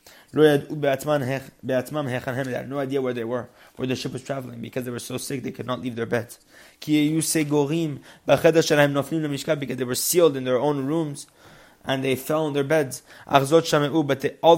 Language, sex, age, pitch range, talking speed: English, male, 20-39, 120-150 Hz, 165 wpm